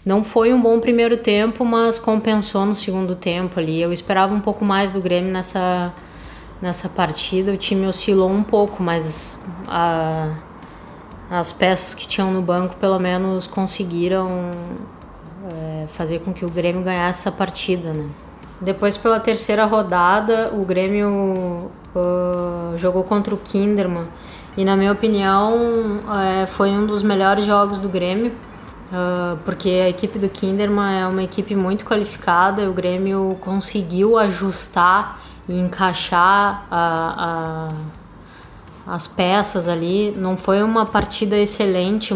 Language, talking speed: Portuguese, 130 wpm